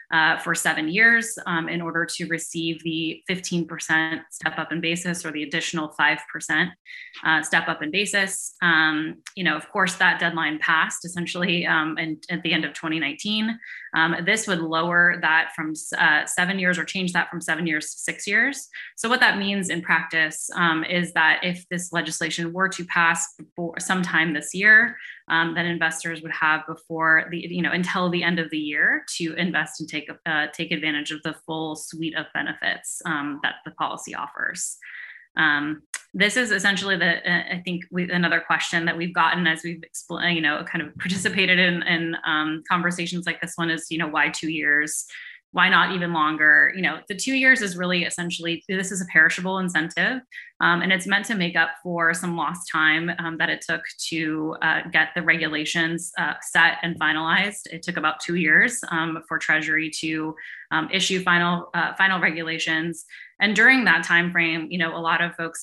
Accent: American